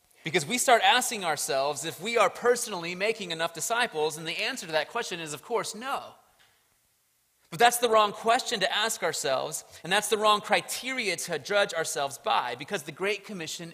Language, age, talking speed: English, 30-49, 190 wpm